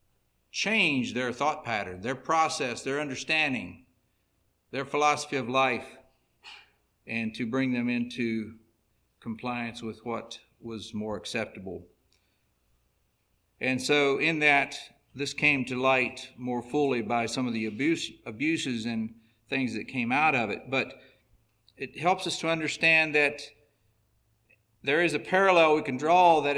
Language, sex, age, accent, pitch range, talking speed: English, male, 50-69, American, 110-145 Hz, 135 wpm